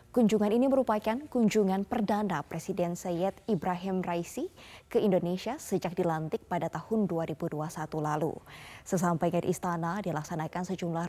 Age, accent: 20-39, native